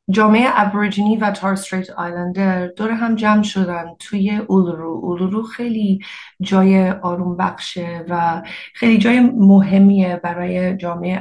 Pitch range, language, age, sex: 180-205 Hz, Persian, 30-49, female